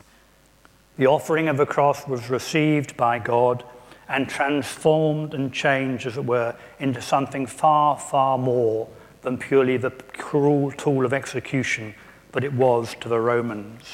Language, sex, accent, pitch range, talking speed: English, male, British, 120-145 Hz, 145 wpm